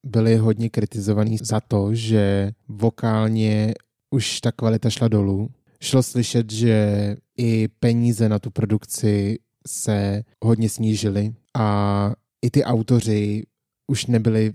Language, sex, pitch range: Czech, male, 110-120 Hz